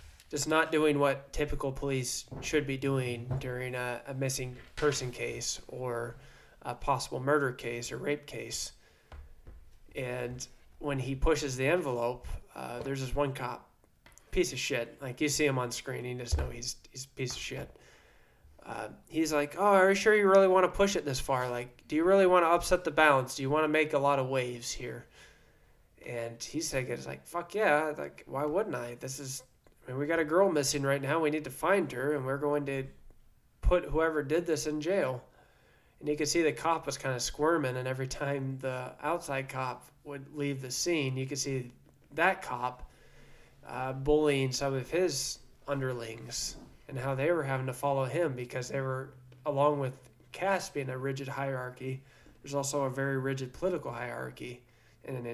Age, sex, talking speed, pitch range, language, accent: 20-39, male, 195 wpm, 125-150 Hz, English, American